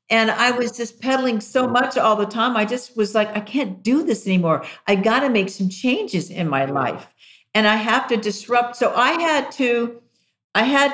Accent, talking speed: American, 215 wpm